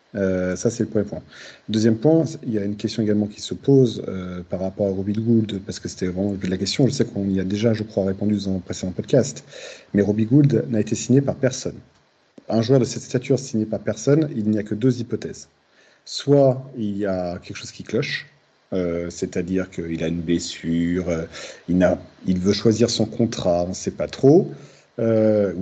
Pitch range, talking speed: 100-130 Hz, 215 wpm